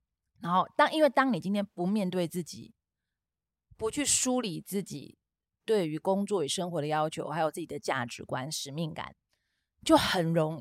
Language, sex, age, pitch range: Chinese, female, 30-49, 165-240 Hz